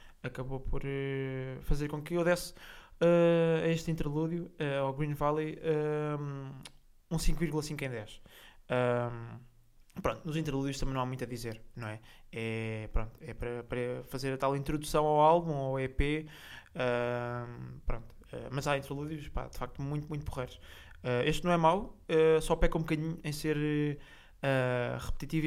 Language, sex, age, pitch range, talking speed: Portuguese, male, 20-39, 125-155 Hz, 140 wpm